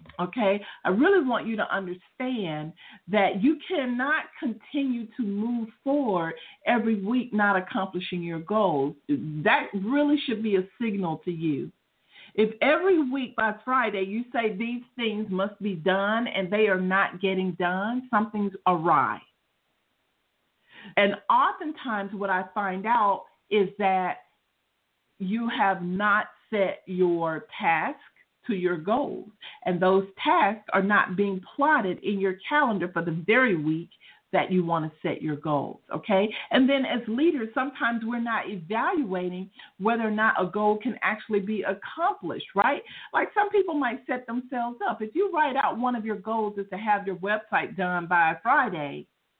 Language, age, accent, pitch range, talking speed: English, 50-69, American, 185-240 Hz, 155 wpm